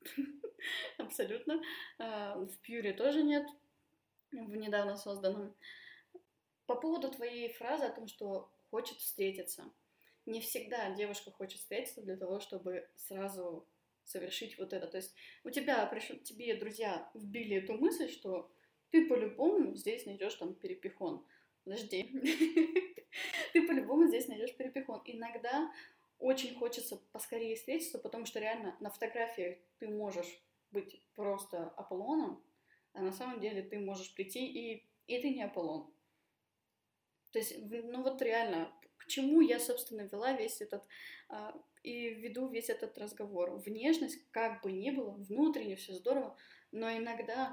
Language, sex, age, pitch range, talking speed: Russian, female, 20-39, 195-275 Hz, 135 wpm